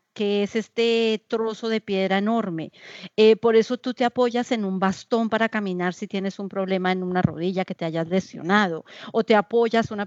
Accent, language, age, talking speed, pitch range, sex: American, Spanish, 40-59, 195 wpm, 190-240 Hz, female